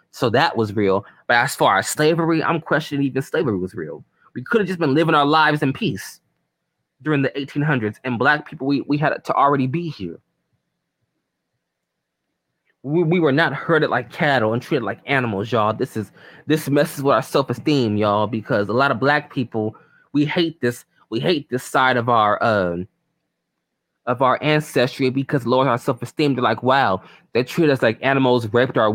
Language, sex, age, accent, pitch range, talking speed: English, male, 20-39, American, 120-150 Hz, 195 wpm